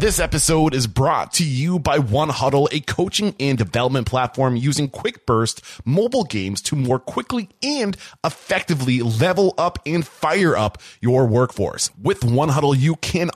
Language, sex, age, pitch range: English, male, 20-39, 115-155 Hz